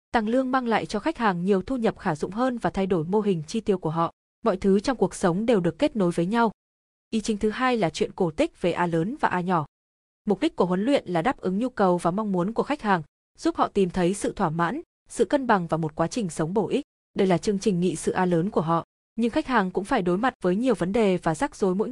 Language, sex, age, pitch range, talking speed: Vietnamese, female, 20-39, 175-235 Hz, 285 wpm